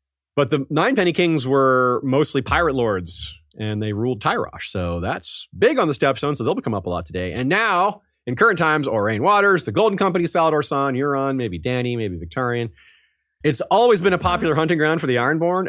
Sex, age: male, 30-49